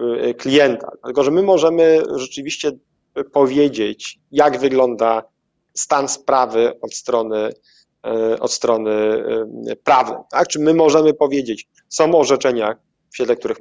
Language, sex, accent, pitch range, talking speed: Polish, male, native, 125-165 Hz, 110 wpm